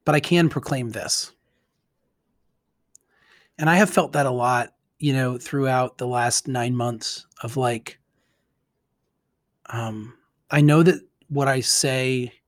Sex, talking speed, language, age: male, 135 wpm, English, 40-59